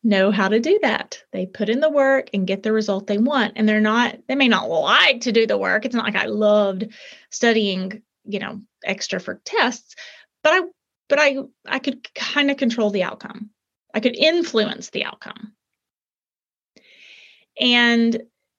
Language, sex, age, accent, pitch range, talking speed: English, female, 30-49, American, 210-245 Hz, 180 wpm